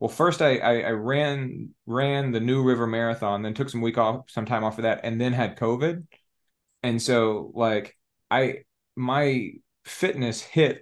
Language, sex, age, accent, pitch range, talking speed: English, male, 30-49, American, 105-130 Hz, 175 wpm